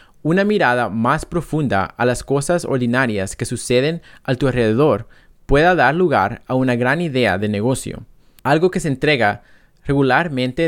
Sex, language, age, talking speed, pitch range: male, English, 20-39, 150 wpm, 120-150 Hz